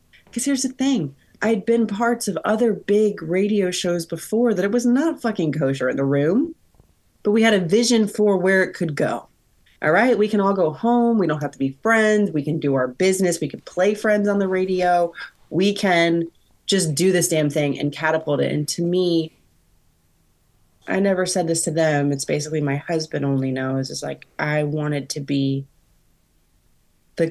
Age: 30-49